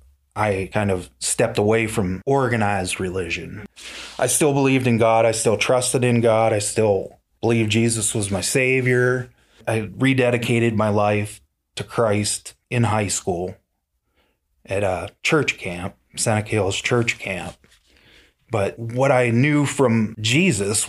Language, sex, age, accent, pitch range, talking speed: English, male, 30-49, American, 105-125 Hz, 140 wpm